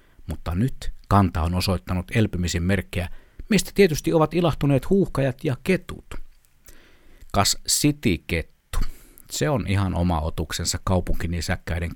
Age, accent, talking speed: 60-79, native, 115 wpm